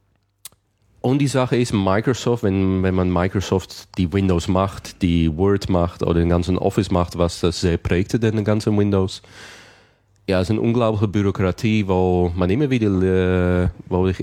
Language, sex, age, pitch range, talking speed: German, male, 30-49, 90-100 Hz, 165 wpm